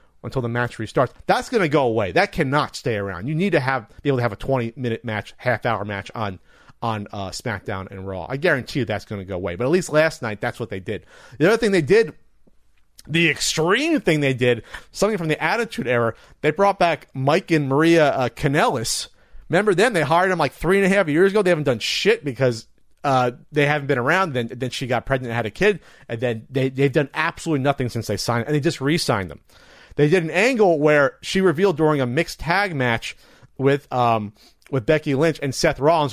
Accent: American